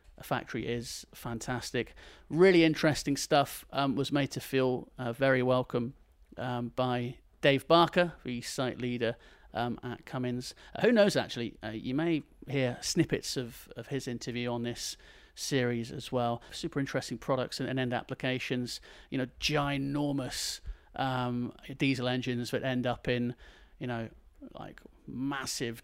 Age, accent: 30-49, British